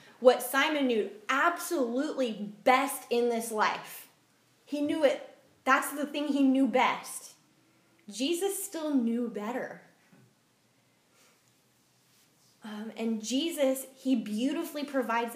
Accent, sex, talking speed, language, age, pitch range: American, female, 105 wpm, English, 10-29, 210-275 Hz